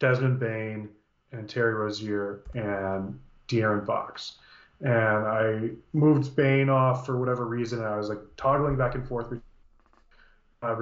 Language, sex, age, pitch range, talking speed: English, male, 30-49, 115-135 Hz, 140 wpm